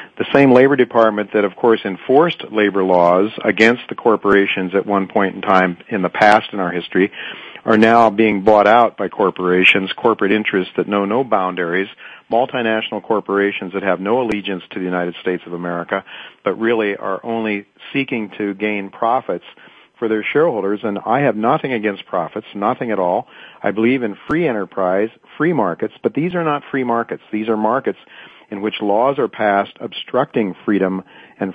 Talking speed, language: 175 wpm, English